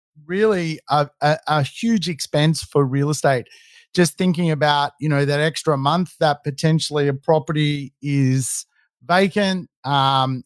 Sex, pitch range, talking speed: male, 145-180 Hz, 130 wpm